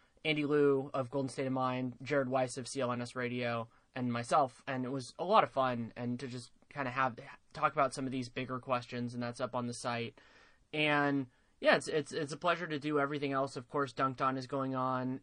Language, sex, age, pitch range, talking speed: English, male, 20-39, 130-155 Hz, 230 wpm